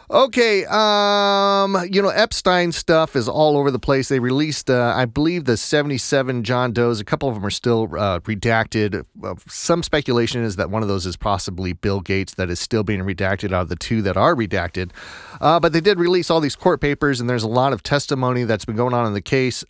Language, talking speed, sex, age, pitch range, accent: English, 220 wpm, male, 30-49, 100-140 Hz, American